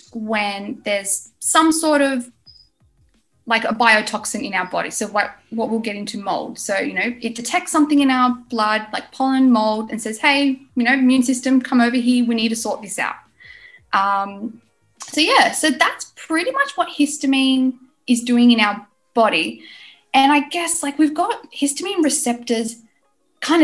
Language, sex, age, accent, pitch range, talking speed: English, female, 10-29, Australian, 220-275 Hz, 175 wpm